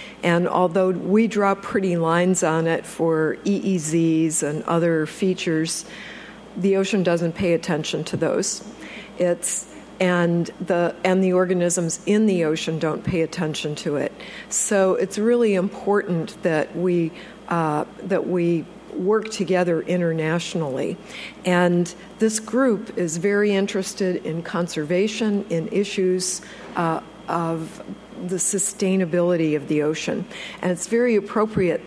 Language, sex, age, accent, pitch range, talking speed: English, female, 50-69, American, 165-205 Hz, 125 wpm